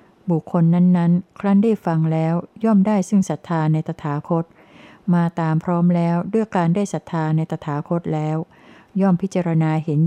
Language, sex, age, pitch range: Thai, female, 60-79, 155-185 Hz